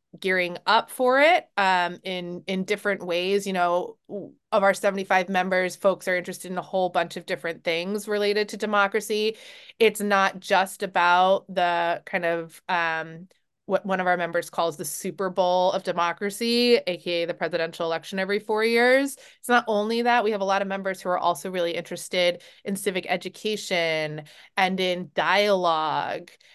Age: 20-39